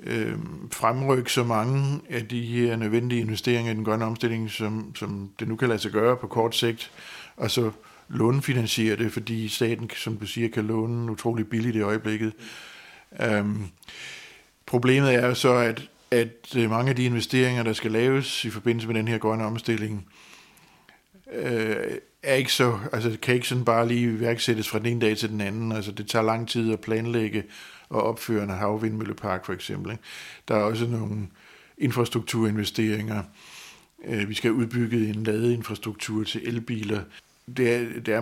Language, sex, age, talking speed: Danish, male, 60-79, 165 wpm